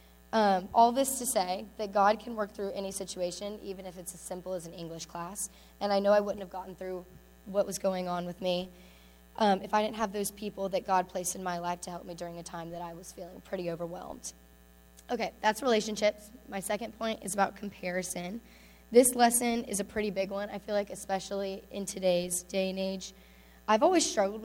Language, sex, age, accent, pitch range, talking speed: English, female, 10-29, American, 185-215 Hz, 215 wpm